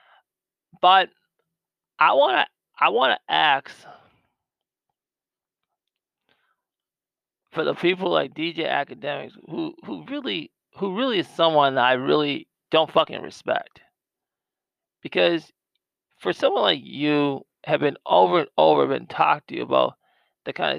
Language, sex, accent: English, male, American